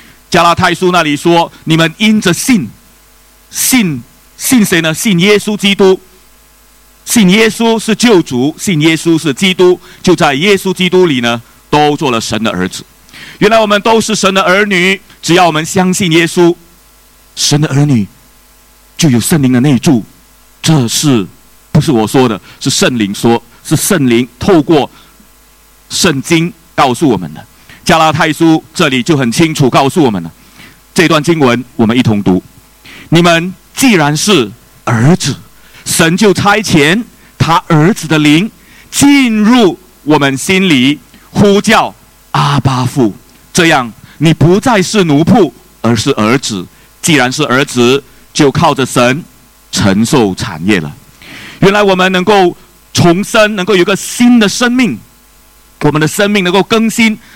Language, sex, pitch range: English, male, 135-195 Hz